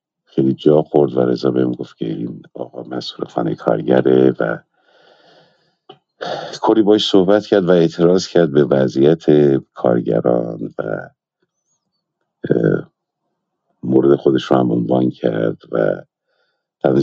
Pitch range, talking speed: 65-80 Hz, 115 wpm